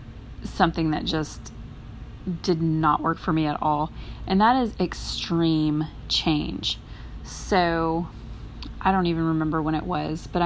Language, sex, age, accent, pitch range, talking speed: English, female, 20-39, American, 155-190 Hz, 140 wpm